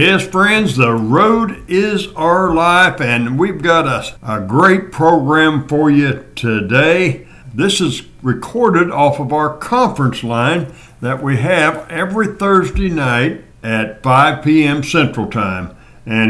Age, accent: 60-79, American